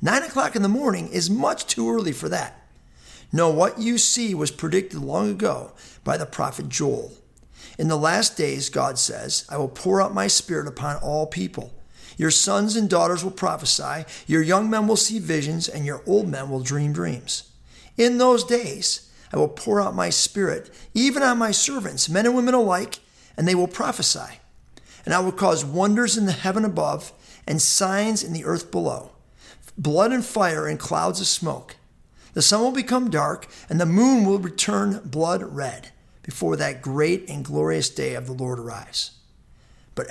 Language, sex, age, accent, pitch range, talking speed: English, male, 50-69, American, 135-210 Hz, 185 wpm